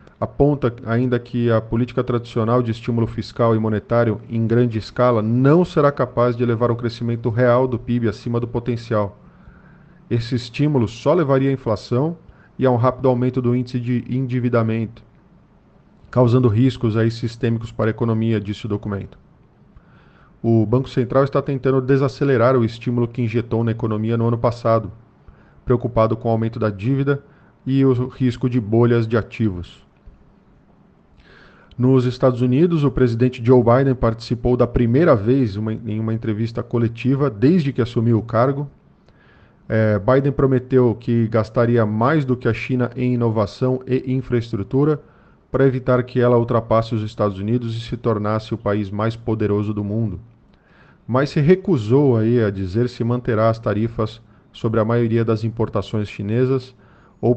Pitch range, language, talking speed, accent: 110-130 Hz, Portuguese, 155 wpm, Brazilian